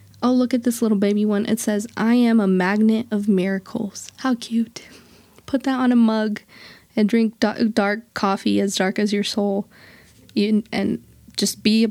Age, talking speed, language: 20-39, 175 wpm, English